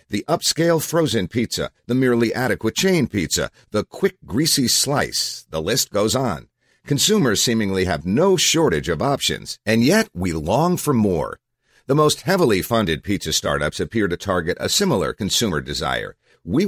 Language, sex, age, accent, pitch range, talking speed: English, male, 50-69, American, 90-145 Hz, 160 wpm